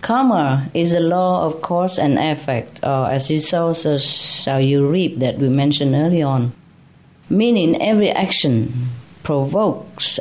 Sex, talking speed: female, 145 wpm